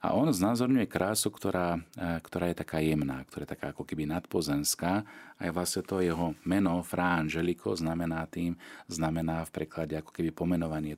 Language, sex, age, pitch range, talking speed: Slovak, male, 40-59, 80-95 Hz, 160 wpm